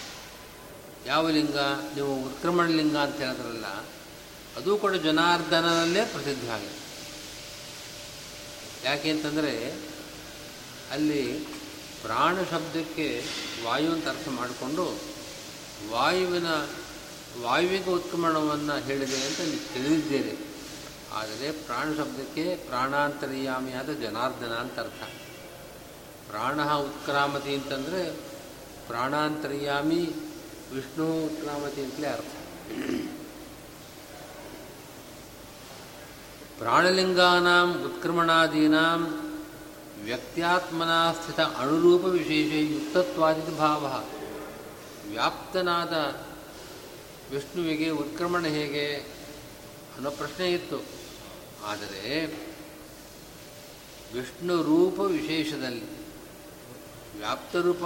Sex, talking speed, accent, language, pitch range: male, 60 wpm, native, Kannada, 145-175 Hz